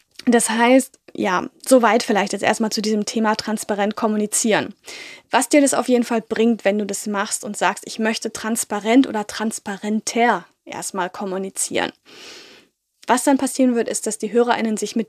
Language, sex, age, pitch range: German, female, 10-29, 205-255 Hz